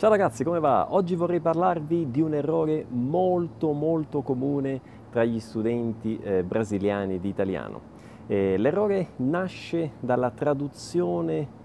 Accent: native